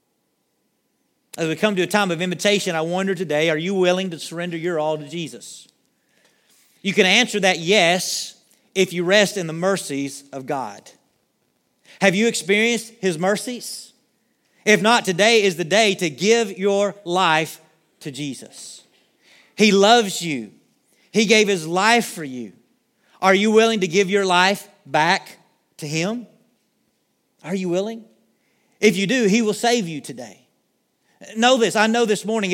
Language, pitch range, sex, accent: English, 180-225 Hz, male, American